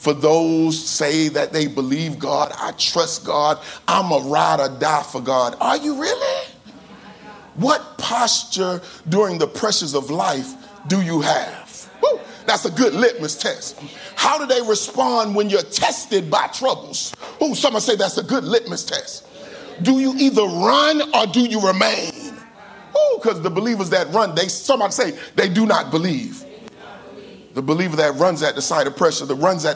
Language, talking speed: English, 170 wpm